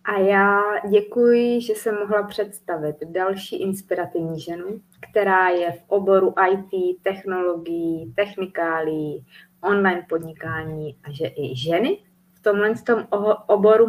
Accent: native